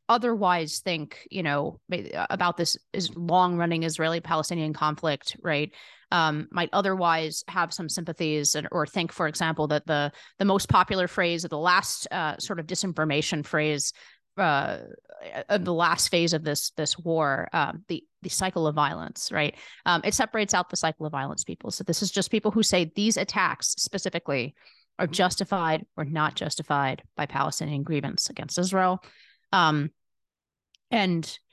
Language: English